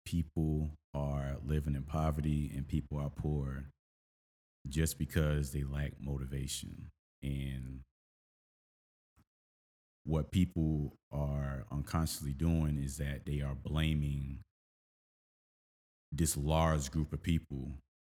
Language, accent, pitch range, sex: English, American, 70-80 Hz, male